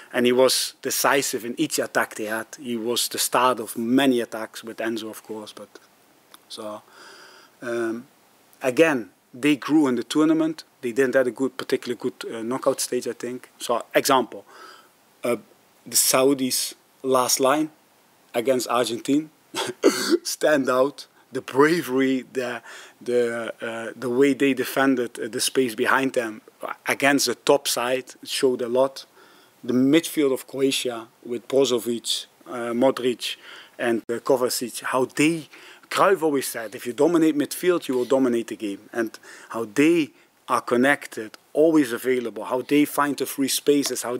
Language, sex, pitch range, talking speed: English, male, 120-140 Hz, 150 wpm